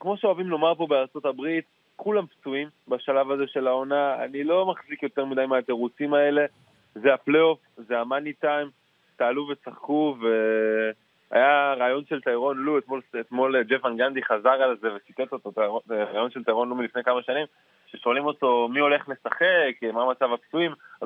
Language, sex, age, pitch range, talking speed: Hebrew, male, 20-39, 125-155 Hz, 155 wpm